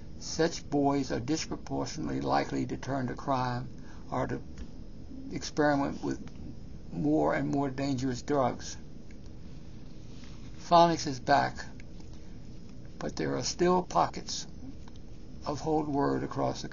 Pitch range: 125-155 Hz